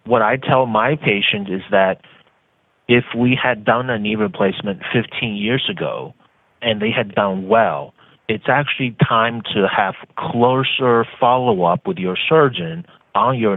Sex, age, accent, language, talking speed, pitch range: male, 30-49, American, English, 150 wpm, 105-130 Hz